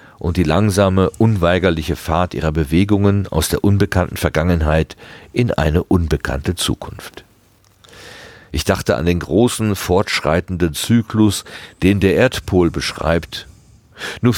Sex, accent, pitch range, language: male, German, 90-115 Hz, German